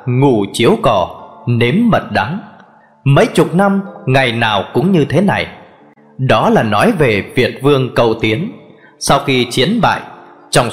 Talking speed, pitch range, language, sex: 155 wpm, 120-170 Hz, Vietnamese, male